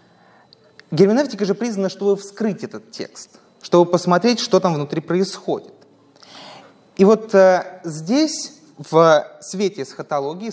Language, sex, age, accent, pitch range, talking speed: Russian, male, 20-39, native, 165-205 Hz, 110 wpm